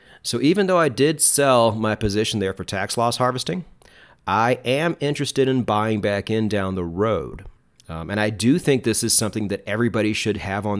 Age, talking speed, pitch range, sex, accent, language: 40-59, 200 wpm, 100-125 Hz, male, American, English